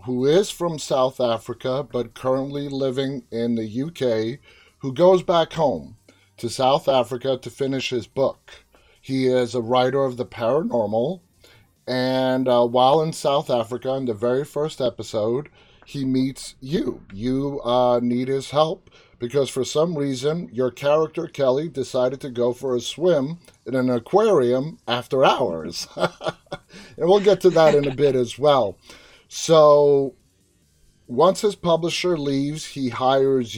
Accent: American